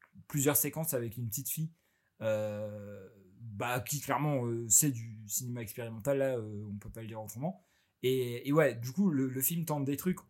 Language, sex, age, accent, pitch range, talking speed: French, male, 20-39, French, 115-150 Hz, 200 wpm